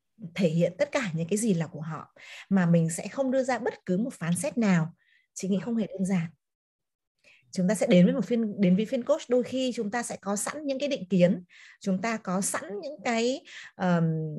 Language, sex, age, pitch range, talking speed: Vietnamese, female, 20-39, 175-235 Hz, 240 wpm